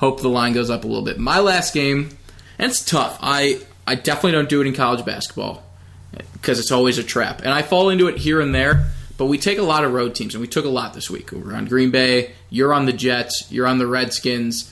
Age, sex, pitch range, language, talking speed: 20-39, male, 115-135 Hz, English, 255 wpm